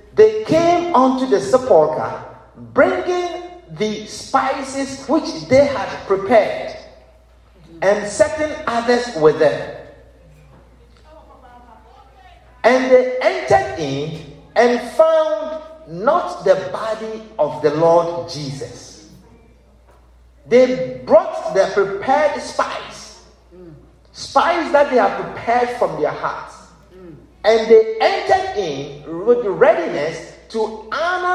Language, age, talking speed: English, 50-69, 100 wpm